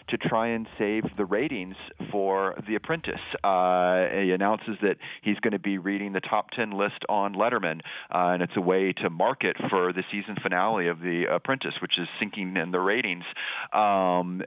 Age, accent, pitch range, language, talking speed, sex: 40-59, American, 90-105 Hz, English, 185 wpm, male